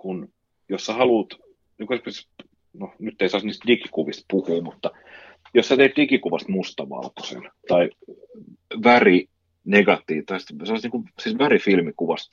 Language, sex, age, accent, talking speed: Finnish, male, 40-59, native, 110 wpm